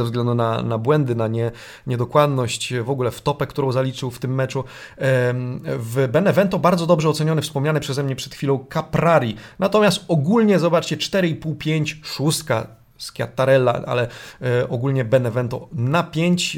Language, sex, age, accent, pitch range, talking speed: Polish, male, 30-49, native, 120-155 Hz, 140 wpm